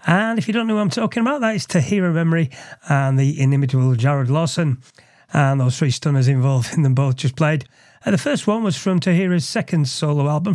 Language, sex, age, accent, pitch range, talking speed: English, male, 30-49, British, 135-190 Hz, 215 wpm